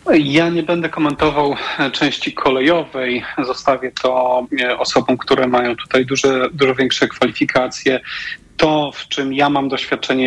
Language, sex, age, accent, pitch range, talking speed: Polish, male, 30-49, native, 125-145 Hz, 130 wpm